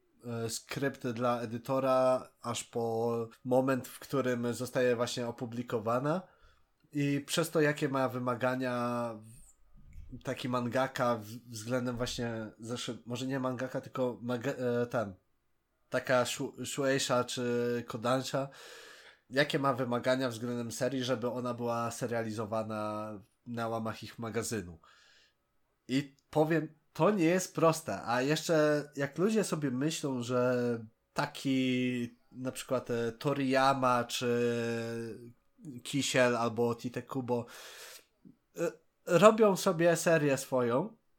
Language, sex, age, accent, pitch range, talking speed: Polish, male, 20-39, native, 120-155 Hz, 105 wpm